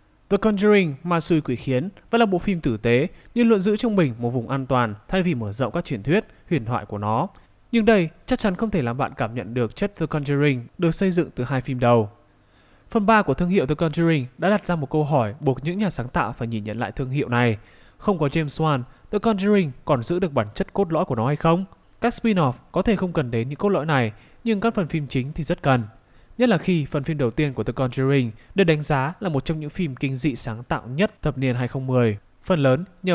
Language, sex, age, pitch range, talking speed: Vietnamese, male, 20-39, 125-185 Hz, 260 wpm